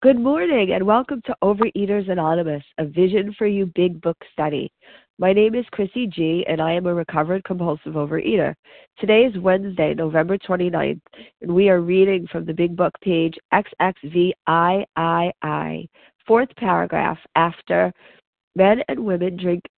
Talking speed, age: 145 wpm, 40-59